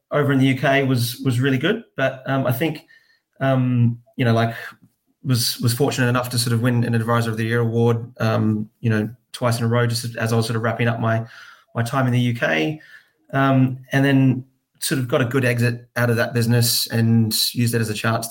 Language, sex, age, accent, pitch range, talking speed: English, male, 20-39, Australian, 115-130 Hz, 230 wpm